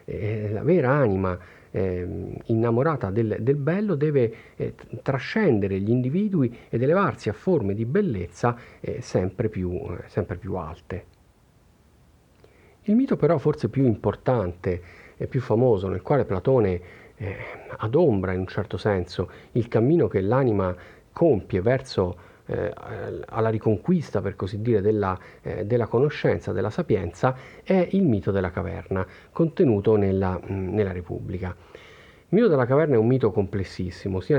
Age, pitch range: 50-69, 95-120 Hz